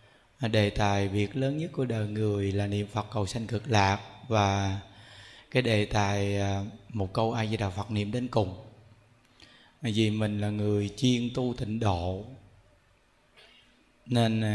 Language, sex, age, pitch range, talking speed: Vietnamese, male, 20-39, 105-130 Hz, 155 wpm